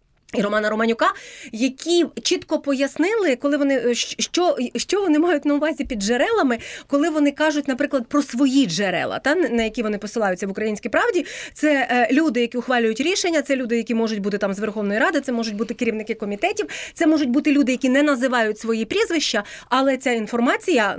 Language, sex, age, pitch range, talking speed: Ukrainian, female, 30-49, 205-275 Hz, 175 wpm